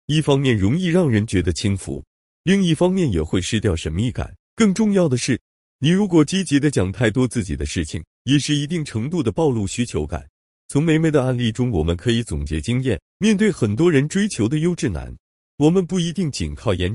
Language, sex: Chinese, male